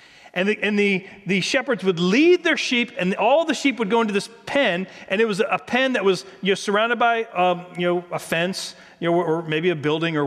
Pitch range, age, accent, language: 175-230 Hz, 40-59, American, English